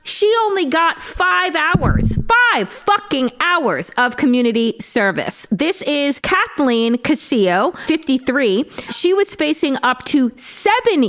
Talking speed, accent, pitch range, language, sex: 120 wpm, American, 220-315 Hz, English, female